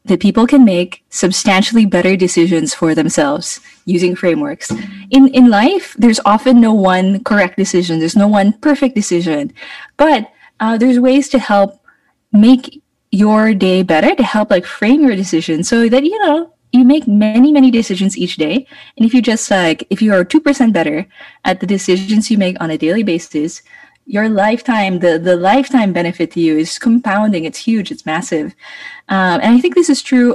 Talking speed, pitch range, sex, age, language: 185 wpm, 185-275 Hz, female, 20-39, English